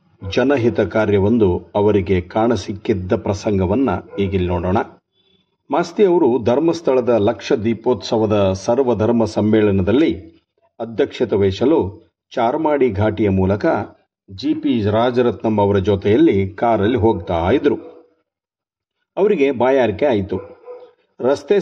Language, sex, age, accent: Kannada, male, 50-69, native